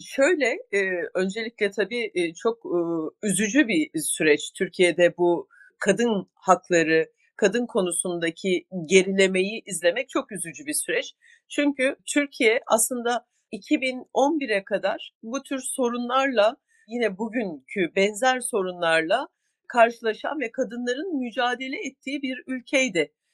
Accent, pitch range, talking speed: native, 190-285 Hz, 100 wpm